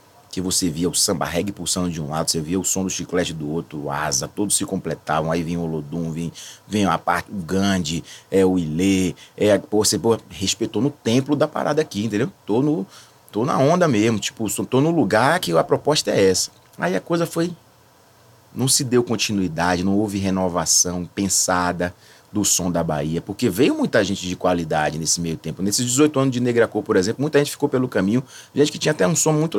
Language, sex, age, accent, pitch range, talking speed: English, male, 30-49, Brazilian, 90-130 Hz, 215 wpm